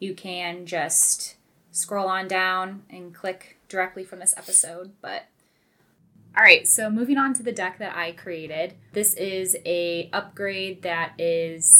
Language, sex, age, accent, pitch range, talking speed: English, female, 10-29, American, 170-195 Hz, 155 wpm